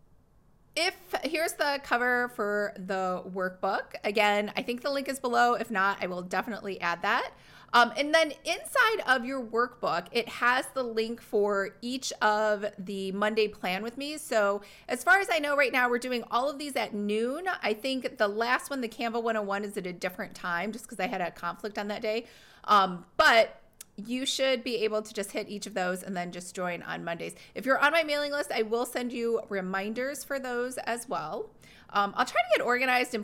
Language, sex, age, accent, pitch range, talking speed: English, female, 30-49, American, 205-265 Hz, 210 wpm